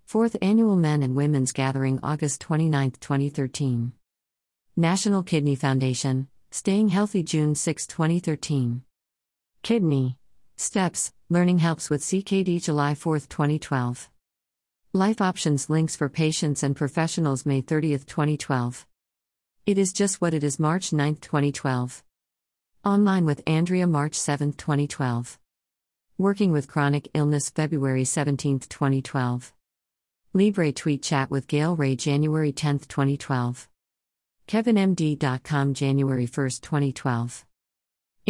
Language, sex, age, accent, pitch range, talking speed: English, female, 50-69, American, 125-160 Hz, 110 wpm